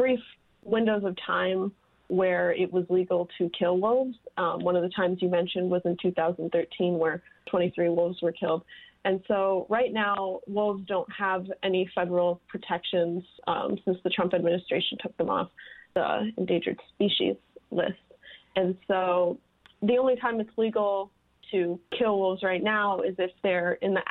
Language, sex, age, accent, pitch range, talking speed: English, female, 20-39, American, 180-215 Hz, 160 wpm